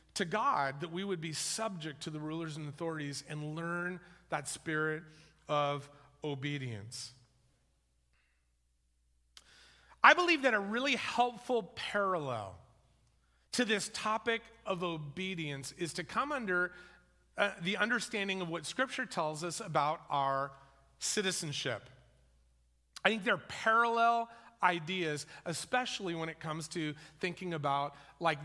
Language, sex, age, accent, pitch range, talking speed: English, male, 40-59, American, 145-205 Hz, 125 wpm